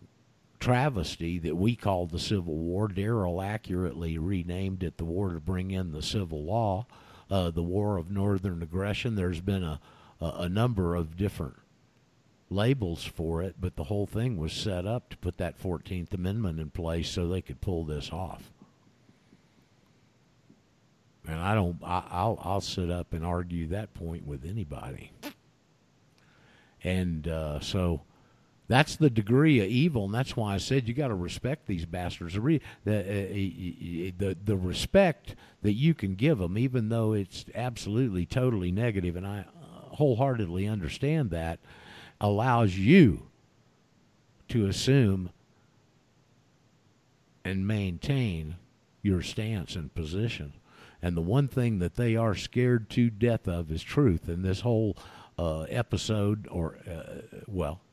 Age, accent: 50-69, American